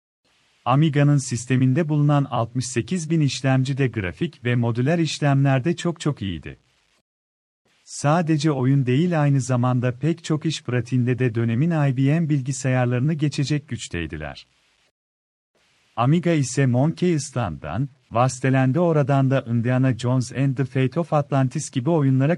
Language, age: Turkish, 40-59